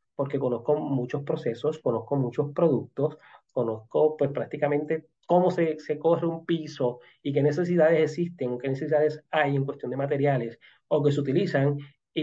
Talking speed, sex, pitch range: 155 wpm, male, 125-155 Hz